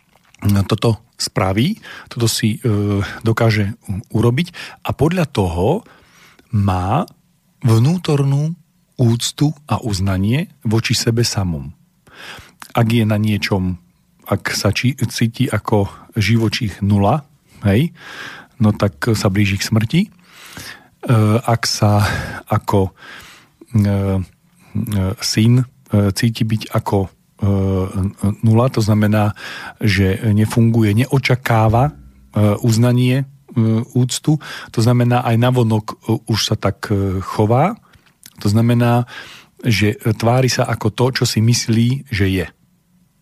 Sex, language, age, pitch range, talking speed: male, Slovak, 40-59, 105-125 Hz, 105 wpm